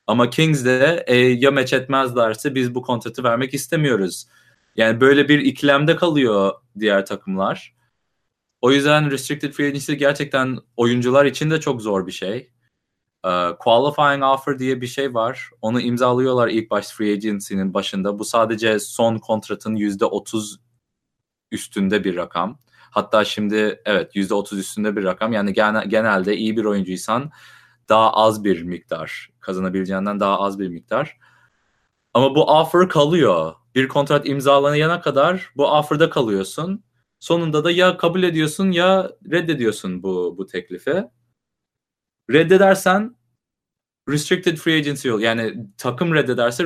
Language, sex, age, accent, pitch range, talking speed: English, male, 30-49, Turkish, 105-150 Hz, 130 wpm